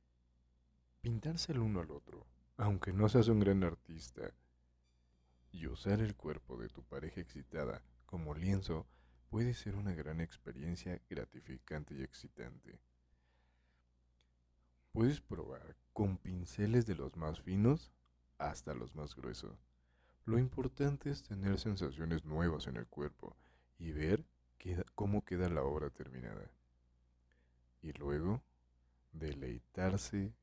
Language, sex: Spanish, male